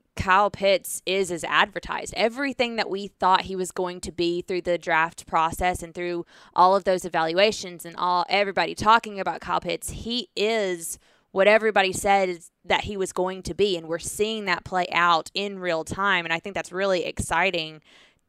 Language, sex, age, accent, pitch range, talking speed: English, female, 20-39, American, 175-200 Hz, 185 wpm